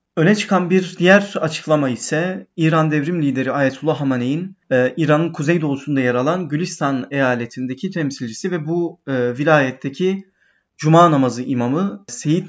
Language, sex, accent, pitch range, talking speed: Turkish, male, native, 130-170 Hz, 120 wpm